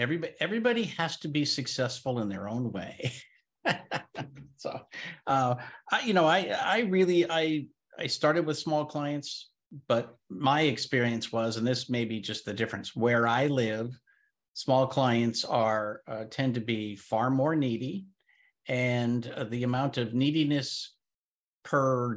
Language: English